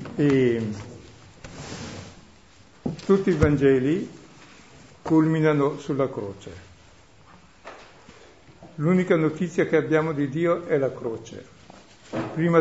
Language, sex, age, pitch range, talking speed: Italian, male, 60-79, 125-160 Hz, 75 wpm